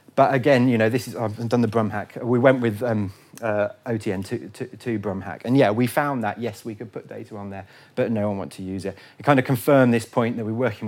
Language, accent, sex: English, British, male